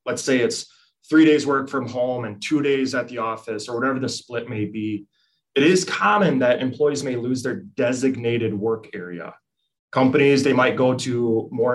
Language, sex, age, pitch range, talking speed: English, male, 20-39, 120-150 Hz, 190 wpm